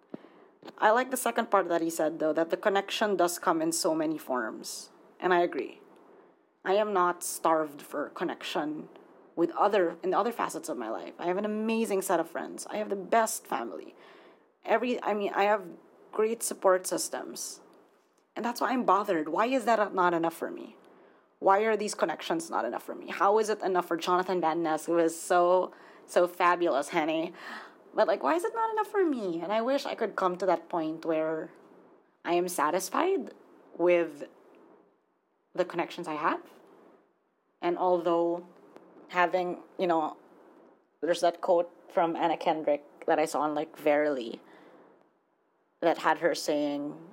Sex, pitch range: female, 160-210 Hz